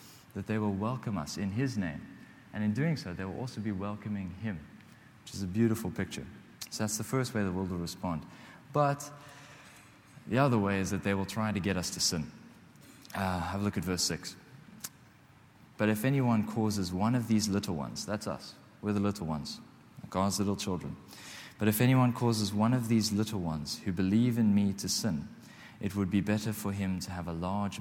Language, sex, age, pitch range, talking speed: English, male, 20-39, 95-115 Hz, 205 wpm